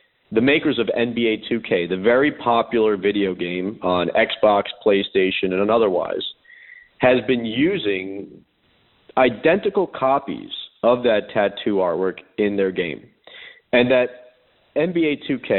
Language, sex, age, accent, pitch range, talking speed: English, male, 40-59, American, 95-115 Hz, 120 wpm